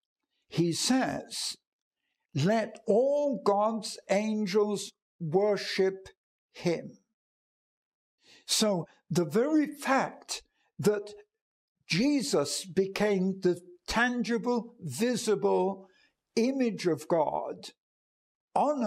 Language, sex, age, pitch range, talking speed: English, male, 60-79, 155-220 Hz, 70 wpm